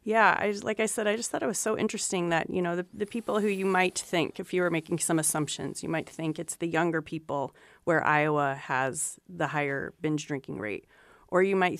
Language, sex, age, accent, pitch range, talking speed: English, female, 30-49, American, 155-185 Hz, 240 wpm